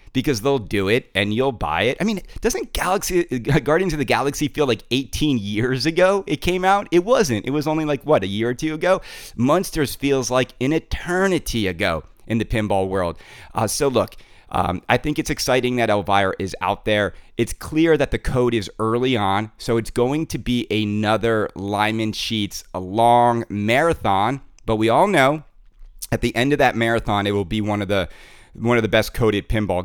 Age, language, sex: 30-49, English, male